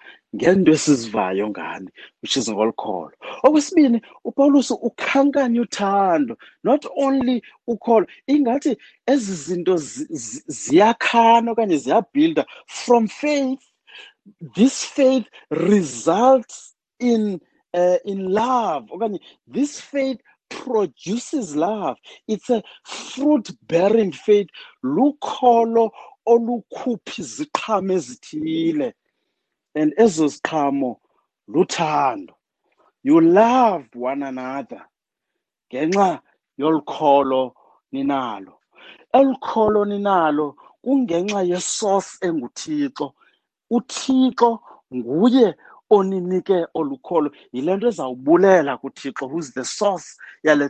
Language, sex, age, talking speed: English, male, 50-69, 90 wpm